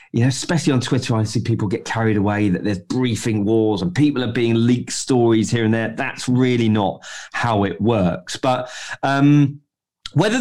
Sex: male